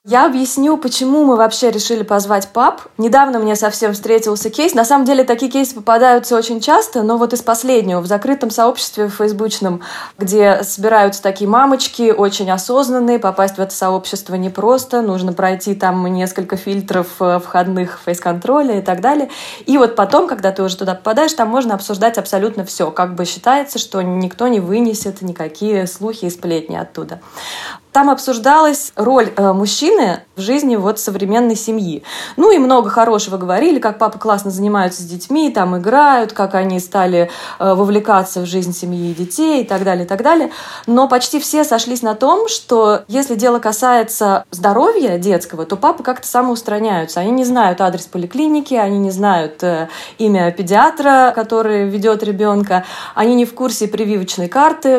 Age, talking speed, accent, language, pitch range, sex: 20-39, 165 wpm, native, Russian, 190-250 Hz, female